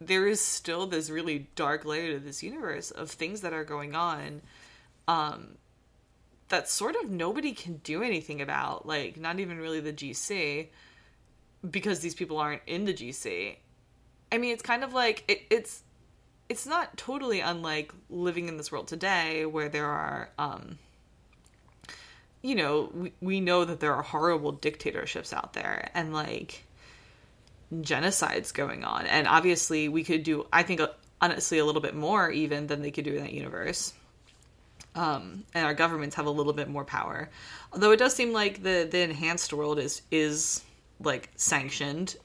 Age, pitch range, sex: 20-39, 150-205 Hz, female